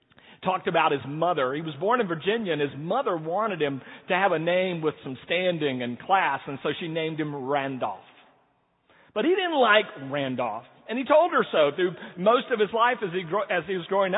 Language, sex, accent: English, male, American